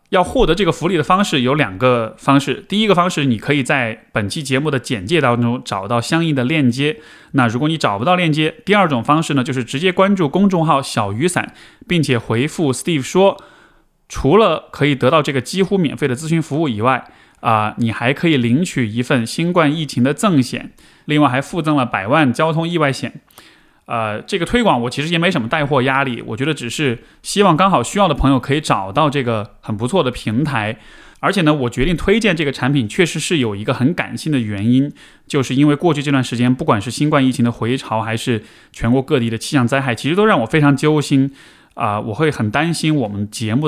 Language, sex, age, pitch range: Chinese, male, 20-39, 125-160 Hz